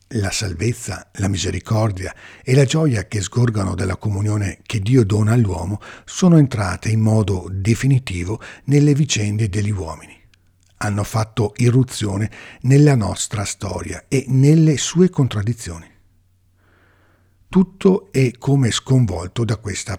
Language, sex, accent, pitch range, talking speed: Italian, male, native, 95-130 Hz, 120 wpm